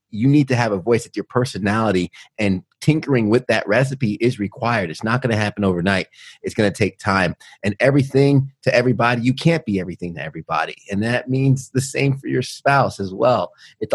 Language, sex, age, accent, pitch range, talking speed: English, male, 30-49, American, 100-130 Hz, 205 wpm